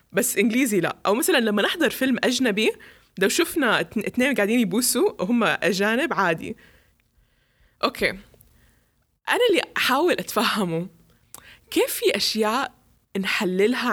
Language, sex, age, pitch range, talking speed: English, female, 20-39, 190-265 Hz, 120 wpm